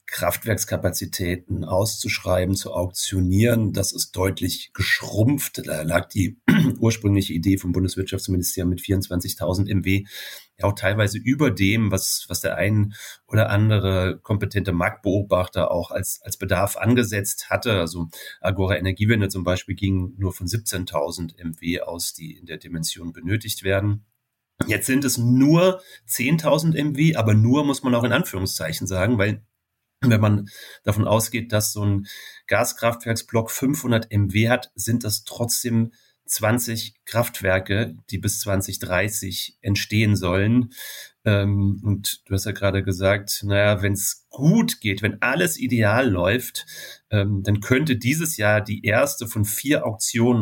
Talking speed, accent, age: 135 wpm, German, 30-49